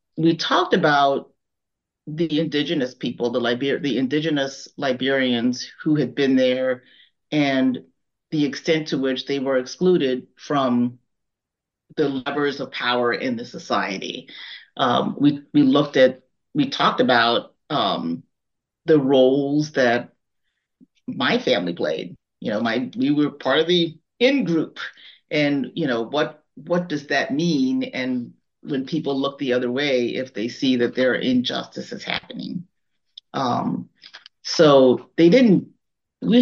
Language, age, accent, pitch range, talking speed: English, 40-59, American, 130-160 Hz, 140 wpm